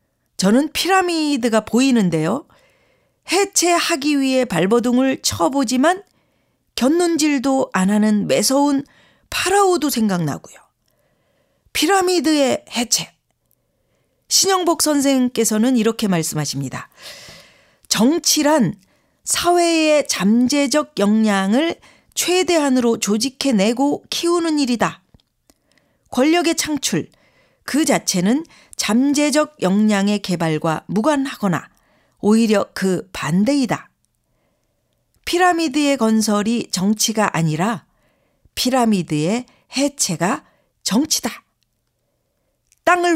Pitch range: 205-300 Hz